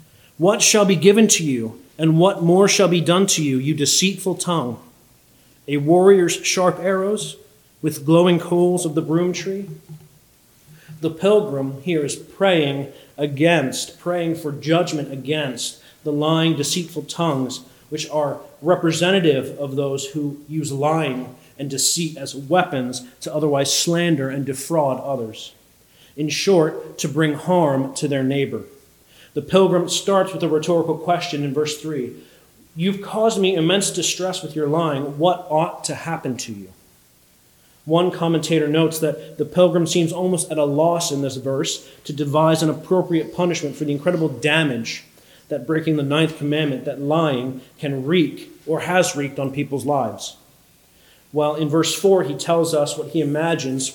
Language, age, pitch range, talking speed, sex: English, 40-59, 140-175 Hz, 155 wpm, male